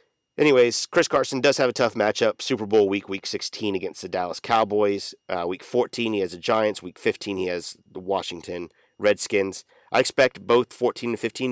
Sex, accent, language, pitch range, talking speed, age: male, American, English, 90-130 Hz, 195 wpm, 30-49